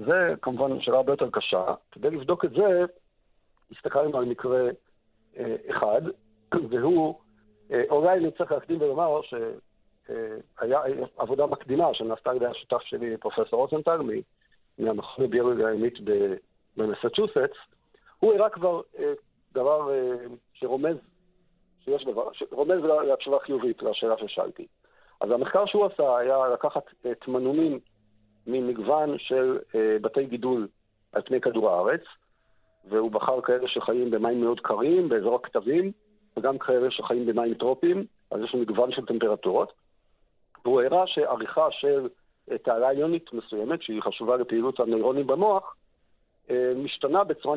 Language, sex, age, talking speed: Hebrew, male, 50-69, 130 wpm